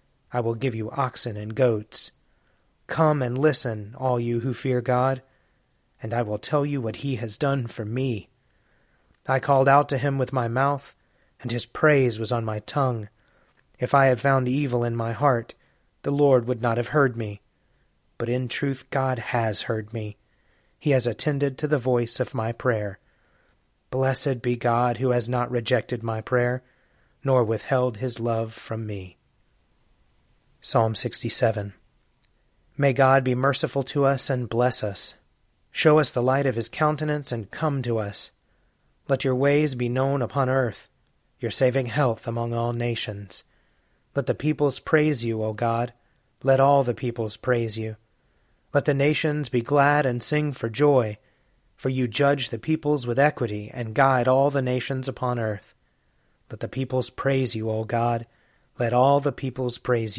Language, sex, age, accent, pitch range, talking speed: English, male, 30-49, American, 115-135 Hz, 170 wpm